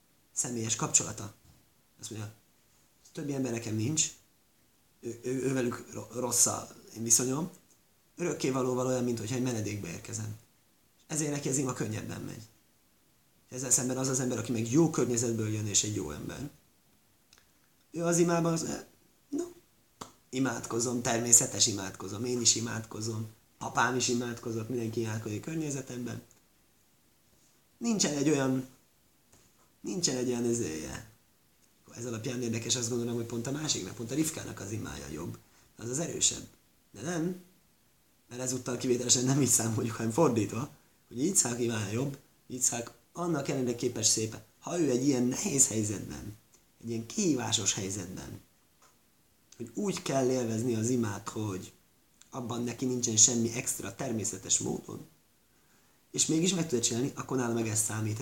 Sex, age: male, 30-49